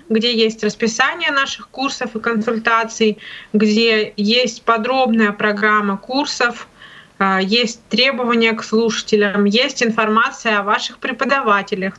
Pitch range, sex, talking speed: 210-245 Hz, female, 105 wpm